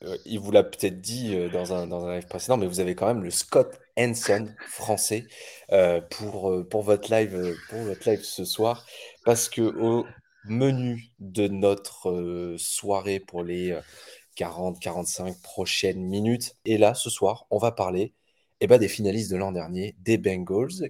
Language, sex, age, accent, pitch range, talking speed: French, male, 20-39, French, 90-110 Hz, 165 wpm